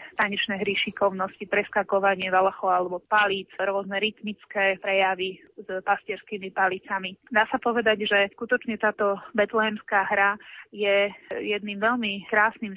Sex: female